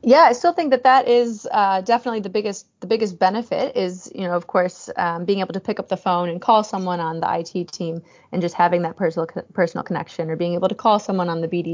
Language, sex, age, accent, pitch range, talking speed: English, female, 30-49, American, 165-200 Hz, 255 wpm